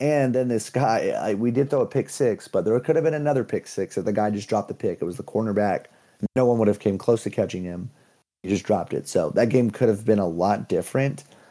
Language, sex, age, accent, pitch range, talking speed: English, male, 30-49, American, 100-120 Hz, 275 wpm